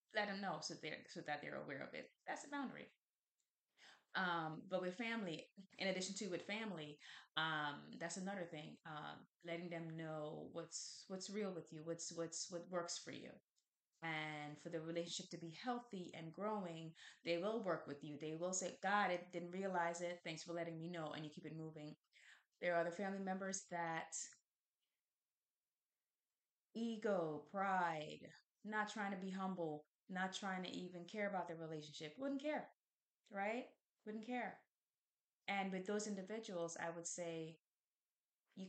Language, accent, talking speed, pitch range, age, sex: English, American, 170 wpm, 165-200 Hz, 20-39, female